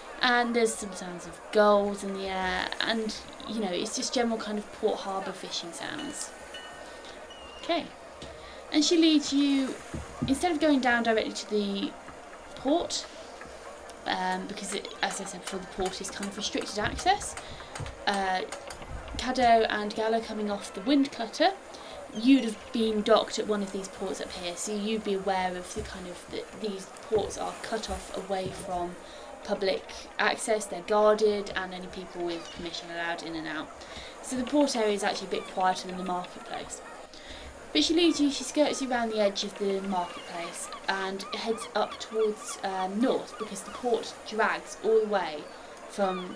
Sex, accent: female, British